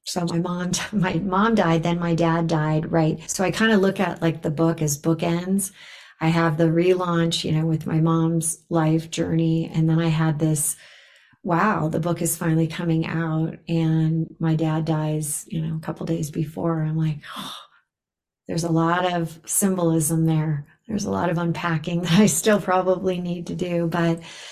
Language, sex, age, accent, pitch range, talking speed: English, female, 40-59, American, 160-175 Hz, 190 wpm